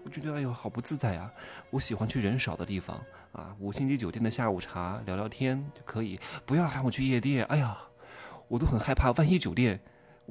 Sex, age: male, 20-39